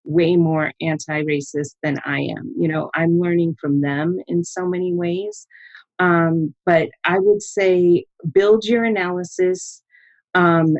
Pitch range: 160-185 Hz